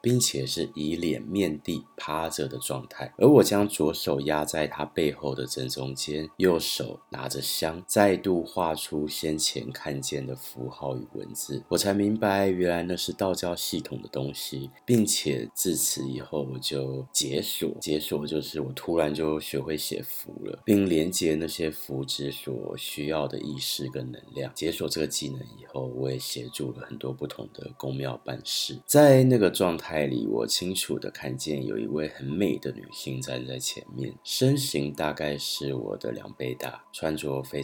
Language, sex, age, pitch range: Chinese, male, 30-49, 65-85 Hz